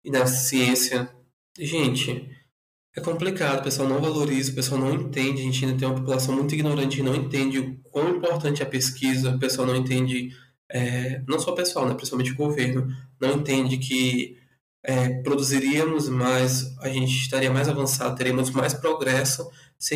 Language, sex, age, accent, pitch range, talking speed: Portuguese, male, 20-39, Brazilian, 130-150 Hz, 175 wpm